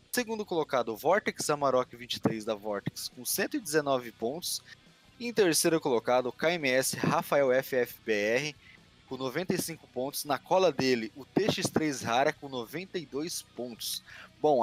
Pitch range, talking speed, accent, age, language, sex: 120-165 Hz, 130 wpm, Brazilian, 20-39, Portuguese, male